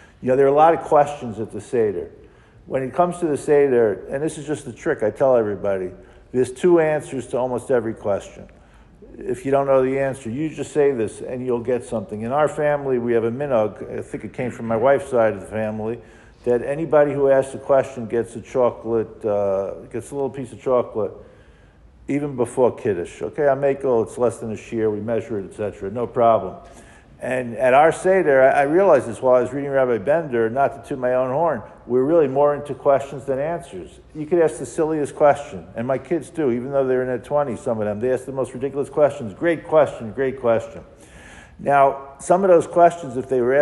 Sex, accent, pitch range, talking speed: male, American, 115-145 Hz, 225 wpm